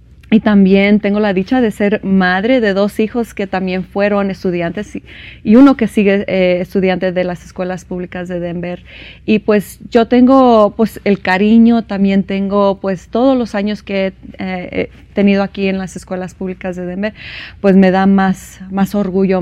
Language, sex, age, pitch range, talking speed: English, female, 30-49, 185-215 Hz, 175 wpm